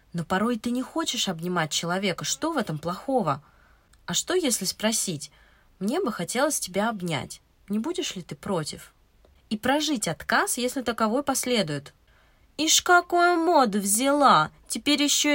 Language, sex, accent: Russian, female, native